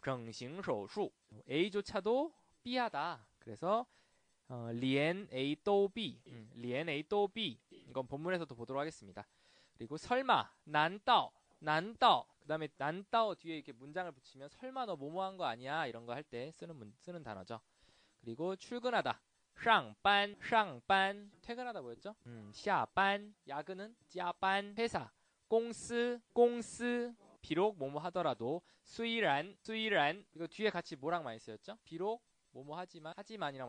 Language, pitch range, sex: Korean, 130-205 Hz, male